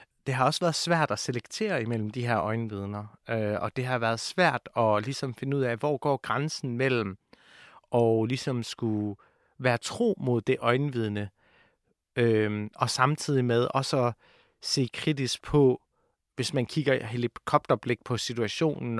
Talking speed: 150 wpm